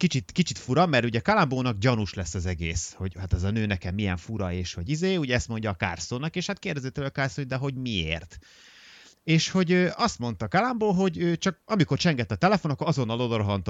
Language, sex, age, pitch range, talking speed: Hungarian, male, 30-49, 105-150 Hz, 220 wpm